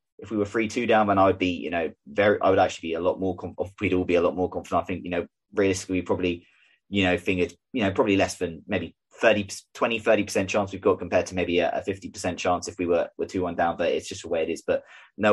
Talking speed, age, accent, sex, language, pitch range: 280 wpm, 20-39, British, male, English, 90-105 Hz